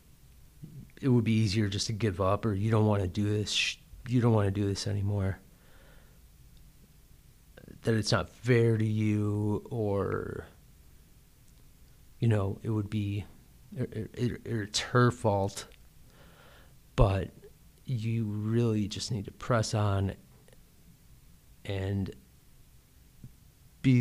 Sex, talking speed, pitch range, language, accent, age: male, 120 wpm, 100-115 Hz, English, American, 30-49